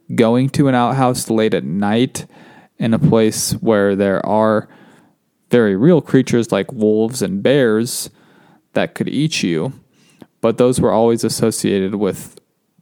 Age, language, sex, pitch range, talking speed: 20-39, English, male, 110-140 Hz, 140 wpm